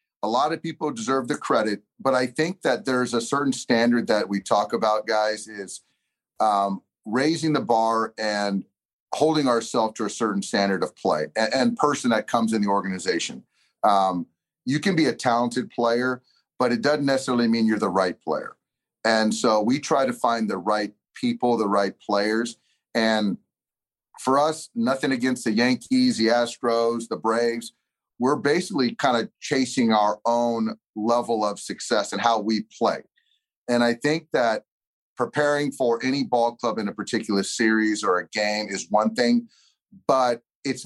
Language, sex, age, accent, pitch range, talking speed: English, male, 40-59, American, 105-130 Hz, 170 wpm